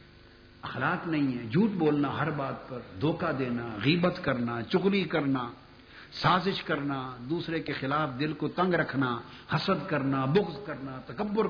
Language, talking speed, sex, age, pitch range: Urdu, 145 wpm, male, 50-69, 115-180 Hz